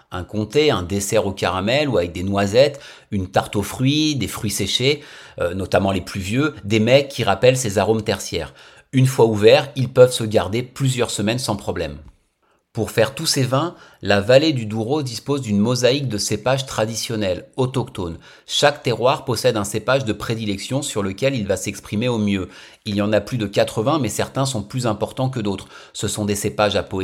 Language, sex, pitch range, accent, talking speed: French, male, 105-135 Hz, French, 200 wpm